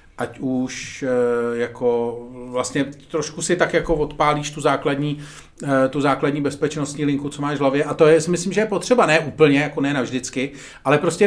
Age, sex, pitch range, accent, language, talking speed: 40-59, male, 140-175 Hz, native, Czech, 170 wpm